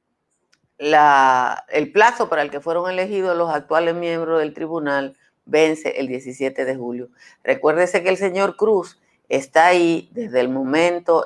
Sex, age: female, 50-69